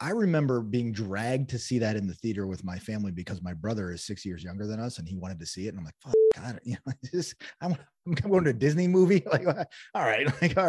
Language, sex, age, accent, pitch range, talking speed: English, male, 30-49, American, 95-135 Hz, 265 wpm